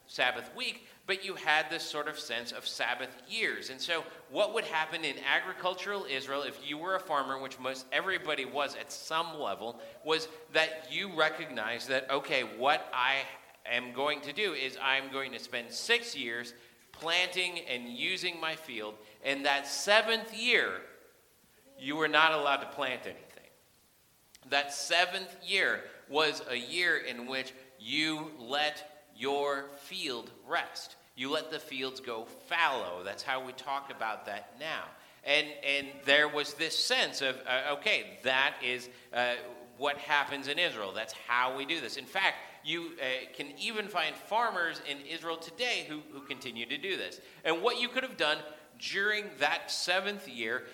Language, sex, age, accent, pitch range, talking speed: English, male, 40-59, American, 135-180 Hz, 165 wpm